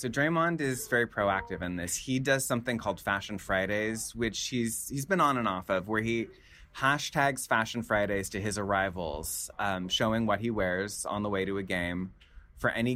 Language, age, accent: English, 20-39, American